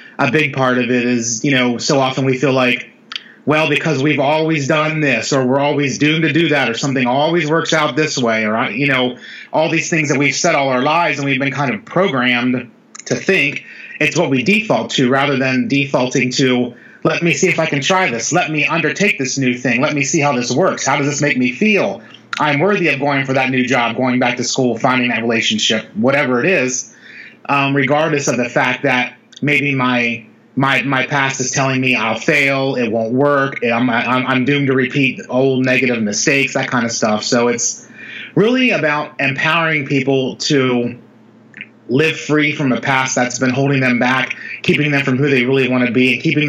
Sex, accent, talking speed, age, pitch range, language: male, American, 215 wpm, 30-49, 125-150 Hz, English